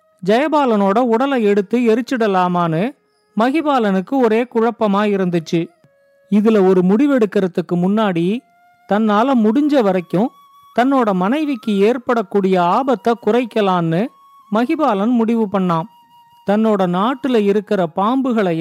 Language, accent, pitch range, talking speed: Tamil, native, 190-255 Hz, 85 wpm